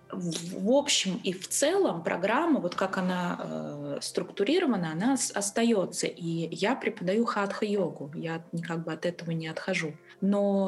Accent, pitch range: native, 170-220 Hz